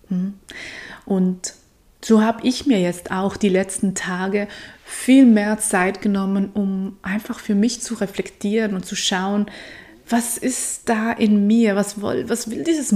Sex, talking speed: female, 150 wpm